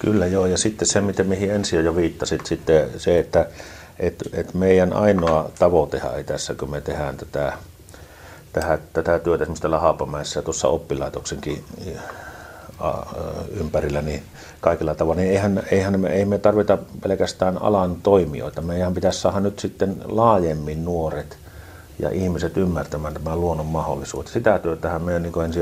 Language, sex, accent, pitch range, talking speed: Finnish, male, native, 80-95 Hz, 150 wpm